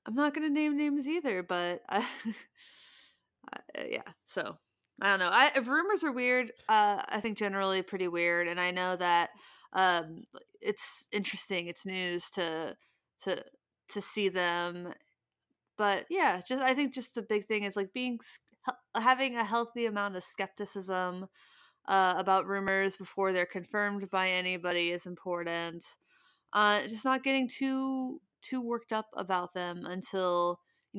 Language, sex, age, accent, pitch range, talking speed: English, female, 20-39, American, 175-225 Hz, 155 wpm